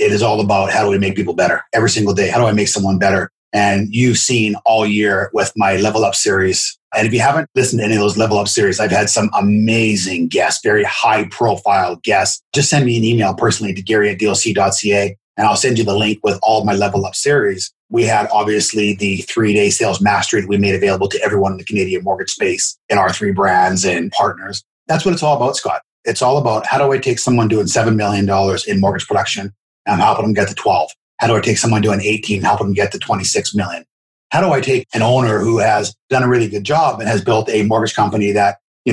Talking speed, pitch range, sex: 245 wpm, 100-120 Hz, male